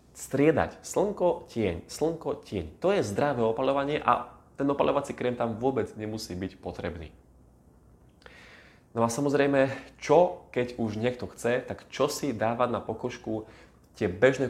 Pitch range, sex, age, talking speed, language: 95-125 Hz, male, 20-39, 140 wpm, Slovak